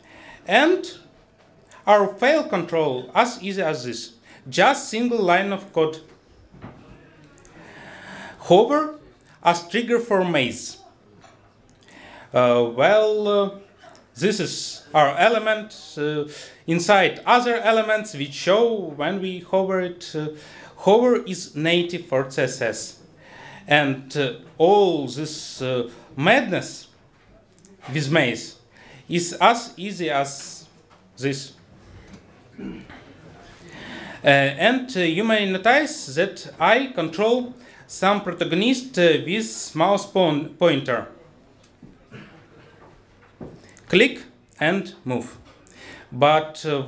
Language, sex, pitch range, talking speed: English, male, 140-205 Hz, 95 wpm